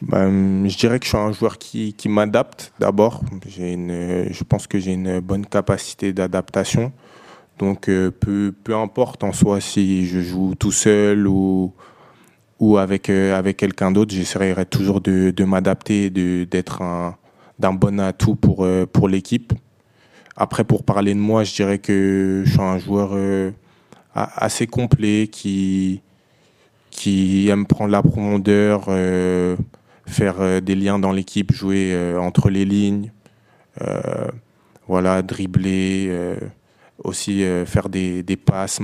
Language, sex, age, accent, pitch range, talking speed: German, male, 20-39, French, 95-105 Hz, 140 wpm